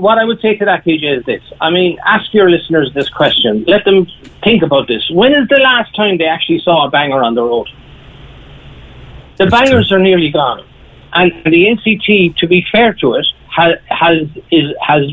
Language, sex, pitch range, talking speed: English, male, 135-180 Hz, 200 wpm